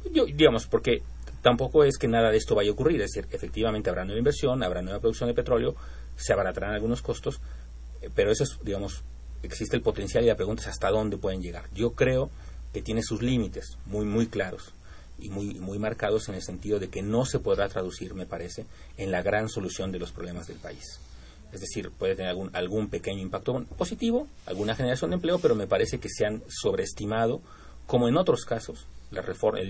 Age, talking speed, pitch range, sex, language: 40-59, 205 wpm, 85-115 Hz, male, Spanish